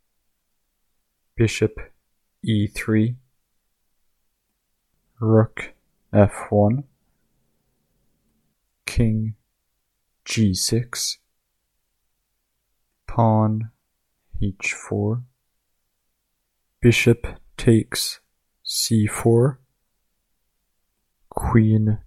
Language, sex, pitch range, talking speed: English, male, 105-115 Hz, 35 wpm